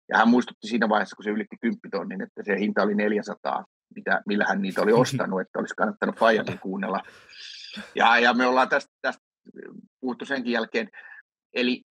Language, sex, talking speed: Finnish, male, 175 wpm